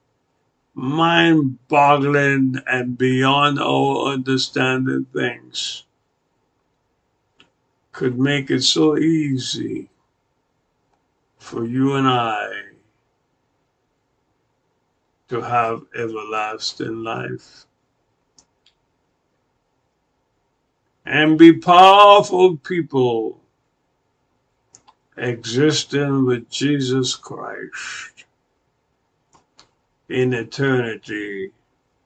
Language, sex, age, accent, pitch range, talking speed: English, male, 60-79, American, 125-155 Hz, 55 wpm